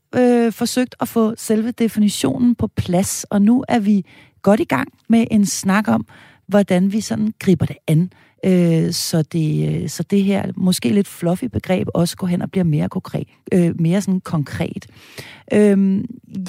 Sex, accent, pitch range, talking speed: female, native, 160-220 Hz, 170 wpm